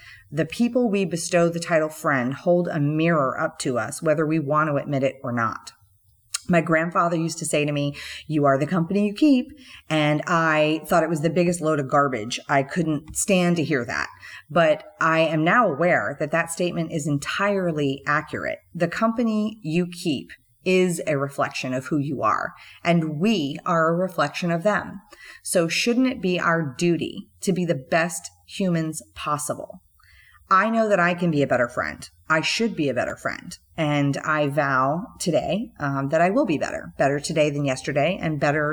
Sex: female